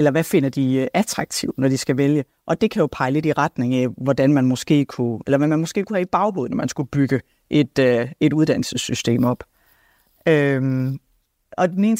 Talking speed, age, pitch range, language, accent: 220 wpm, 30-49, 135-160 Hz, Danish, native